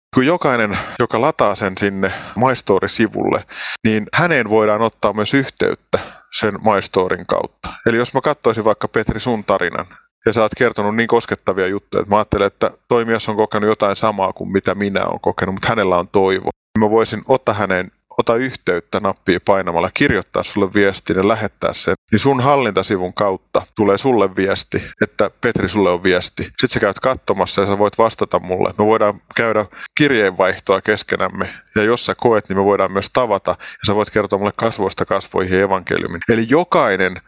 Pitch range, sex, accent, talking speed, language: 95-115 Hz, male, native, 175 wpm, Finnish